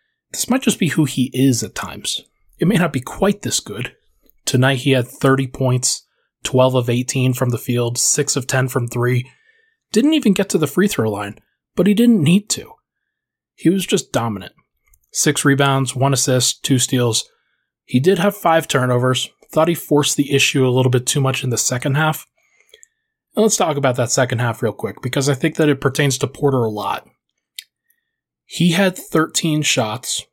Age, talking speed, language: 20-39, 190 wpm, English